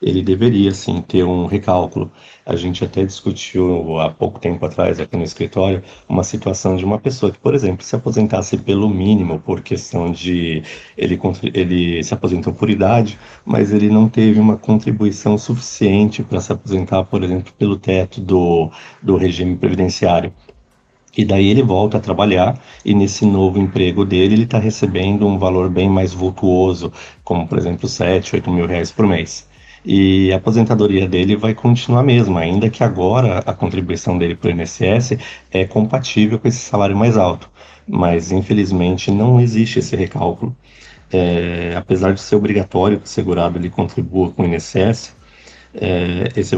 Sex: male